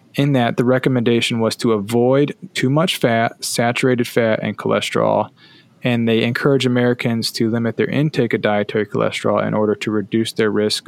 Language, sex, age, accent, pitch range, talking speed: English, male, 20-39, American, 115-140 Hz, 170 wpm